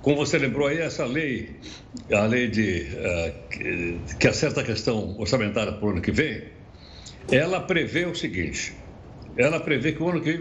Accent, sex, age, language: Brazilian, male, 60-79, Portuguese